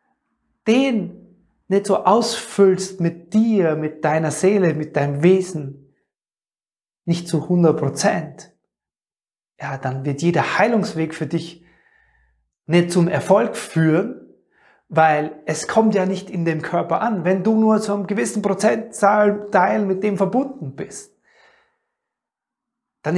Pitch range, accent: 165-210 Hz, German